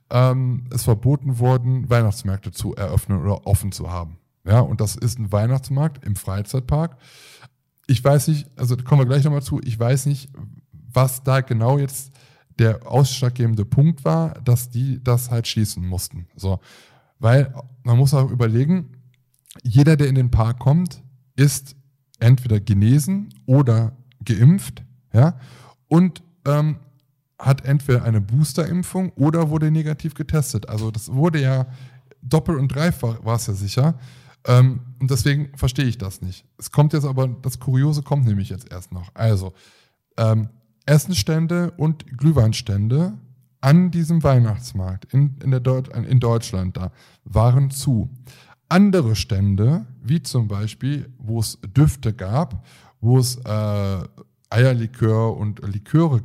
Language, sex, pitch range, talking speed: German, male, 115-140 Hz, 140 wpm